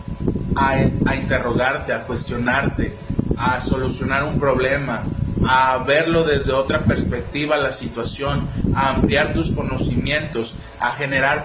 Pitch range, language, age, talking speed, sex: 125-155 Hz, Spanish, 30-49, 115 wpm, male